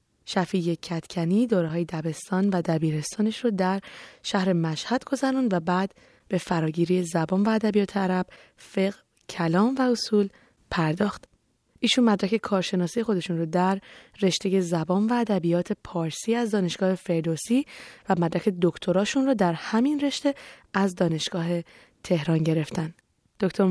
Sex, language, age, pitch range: female, Persian, 20-39, 170-210 Hz